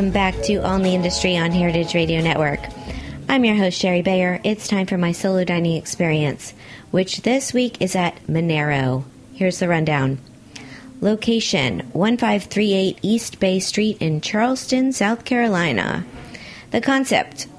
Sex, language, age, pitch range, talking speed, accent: female, English, 30-49, 170-220 Hz, 145 wpm, American